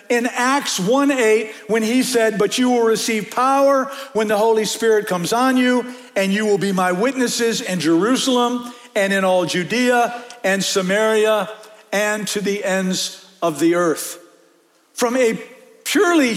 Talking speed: 155 wpm